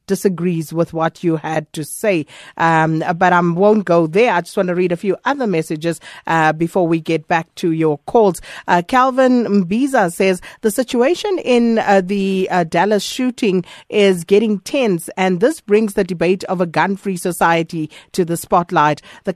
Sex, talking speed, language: female, 180 wpm, English